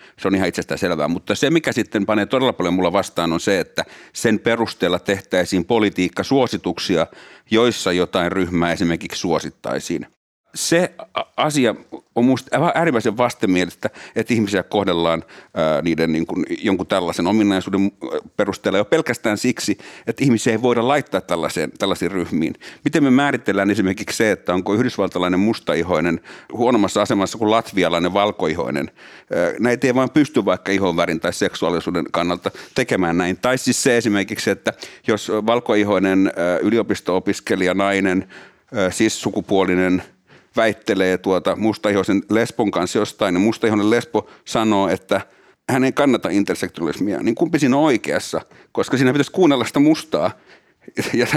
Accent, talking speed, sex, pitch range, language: native, 140 wpm, male, 95-120 Hz, Finnish